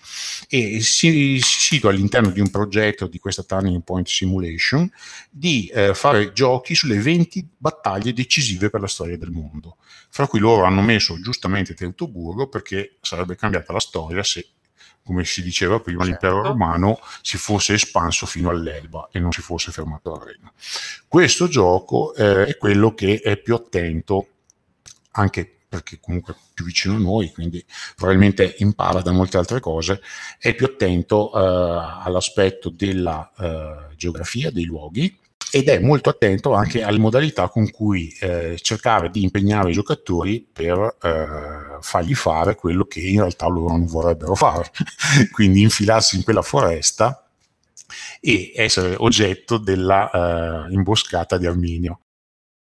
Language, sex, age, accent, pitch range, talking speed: Italian, male, 50-69, native, 85-110 Hz, 145 wpm